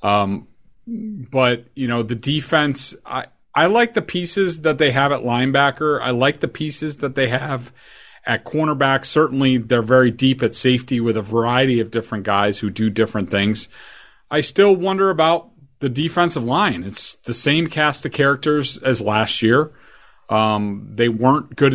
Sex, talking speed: male, 170 wpm